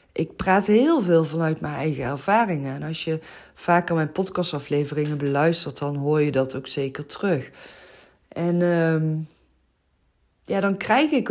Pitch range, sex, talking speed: 145-190 Hz, female, 150 wpm